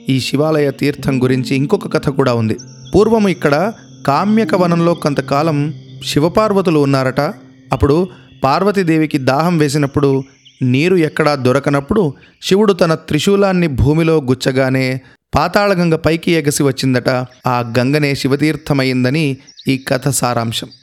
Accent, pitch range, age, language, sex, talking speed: native, 130-160 Hz, 30-49, Telugu, male, 105 wpm